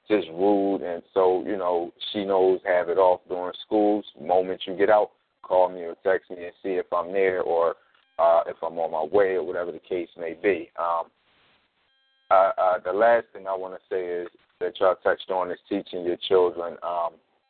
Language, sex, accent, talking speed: English, male, American, 205 wpm